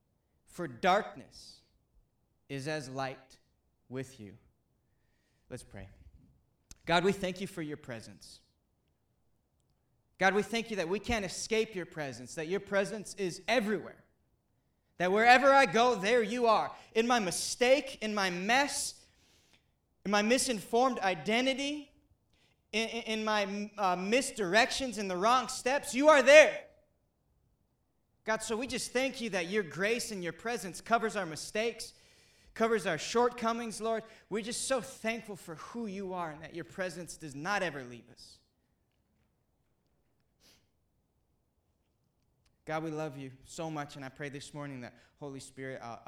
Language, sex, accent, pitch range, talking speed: English, male, American, 135-225 Hz, 145 wpm